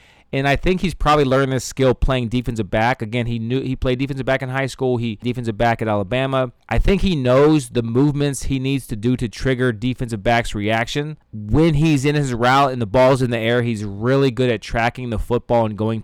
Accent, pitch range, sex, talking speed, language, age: American, 120-145 Hz, male, 230 wpm, English, 30-49